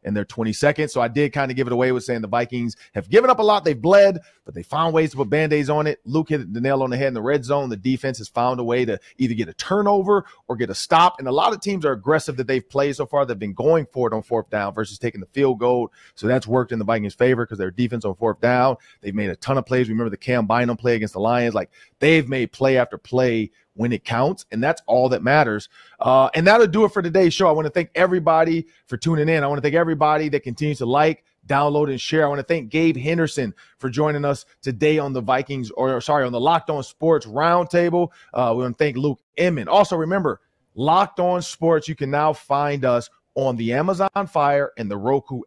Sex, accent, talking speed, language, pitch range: male, American, 260 wpm, English, 120-165 Hz